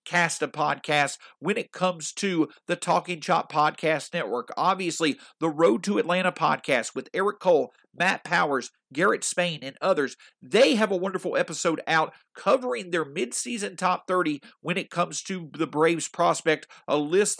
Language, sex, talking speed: English, male, 160 wpm